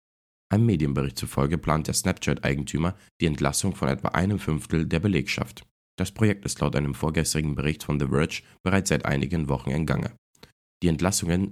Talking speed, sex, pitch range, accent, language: 165 wpm, male, 70-90 Hz, German, German